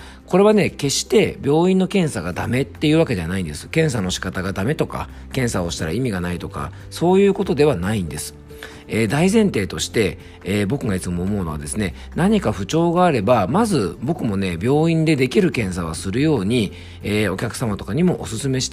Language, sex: Japanese, male